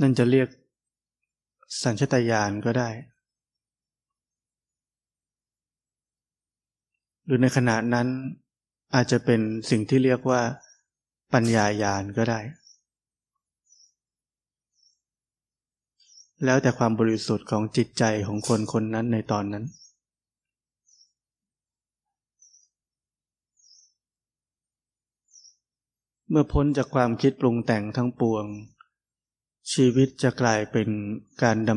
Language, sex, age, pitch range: Thai, male, 20-39, 110-130 Hz